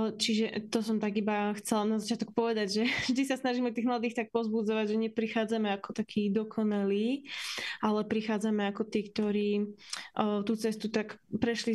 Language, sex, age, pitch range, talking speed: Slovak, female, 20-39, 205-230 Hz, 160 wpm